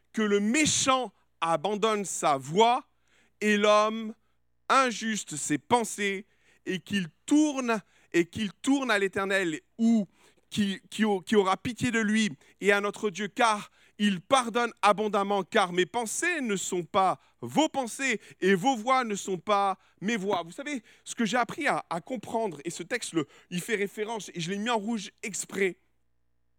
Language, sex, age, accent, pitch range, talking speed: French, male, 40-59, French, 160-255 Hz, 160 wpm